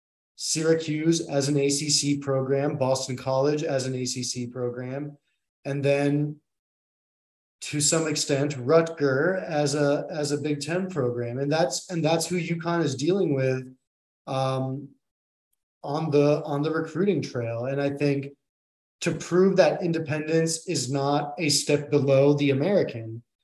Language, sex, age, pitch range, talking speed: English, male, 20-39, 140-175 Hz, 140 wpm